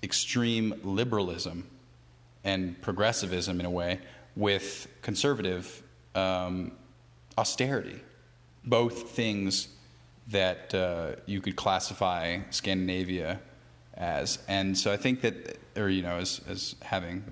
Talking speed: 105 wpm